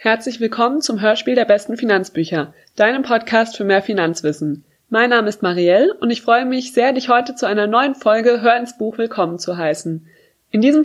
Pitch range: 200-255 Hz